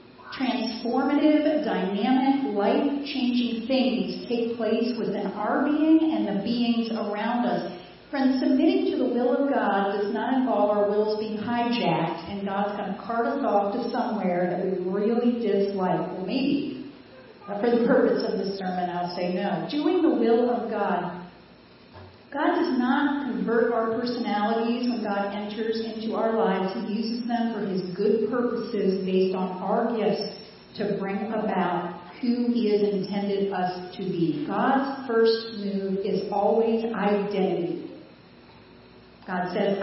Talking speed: 150 wpm